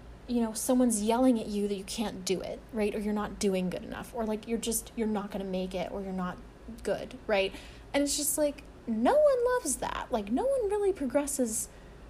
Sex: female